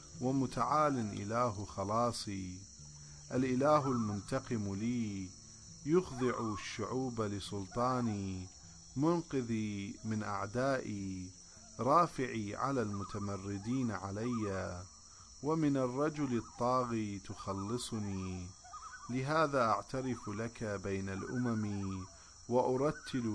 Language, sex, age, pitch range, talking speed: English, male, 40-59, 95-120 Hz, 65 wpm